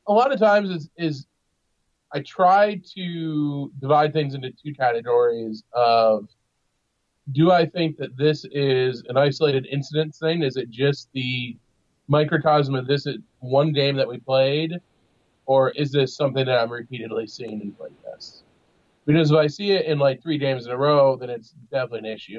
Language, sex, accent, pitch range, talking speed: English, male, American, 125-160 Hz, 170 wpm